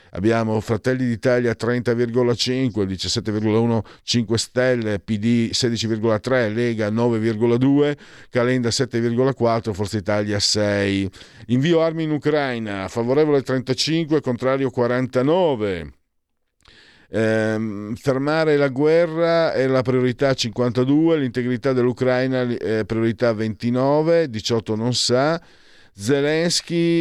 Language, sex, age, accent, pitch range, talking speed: Italian, male, 50-69, native, 105-130 Hz, 95 wpm